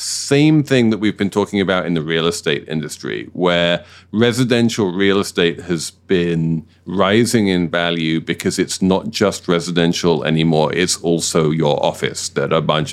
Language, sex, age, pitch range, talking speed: English, male, 40-59, 85-105 Hz, 160 wpm